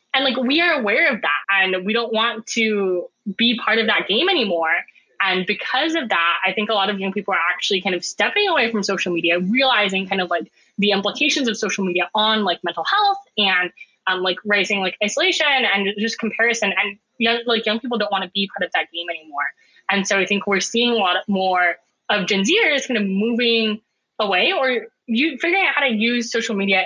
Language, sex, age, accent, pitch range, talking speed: English, female, 10-29, American, 190-235 Hz, 220 wpm